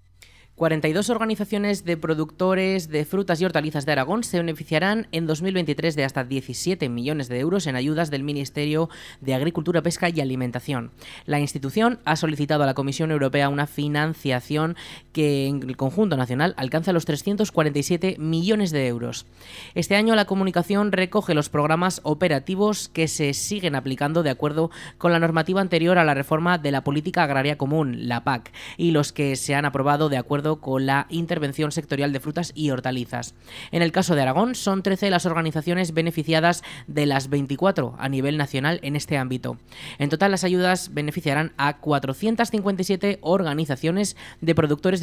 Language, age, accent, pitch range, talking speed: Spanish, 20-39, Spanish, 140-175 Hz, 165 wpm